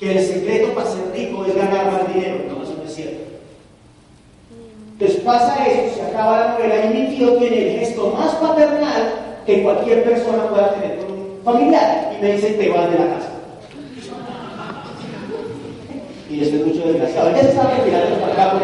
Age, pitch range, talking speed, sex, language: 30-49, 180-240 Hz, 190 wpm, male, Spanish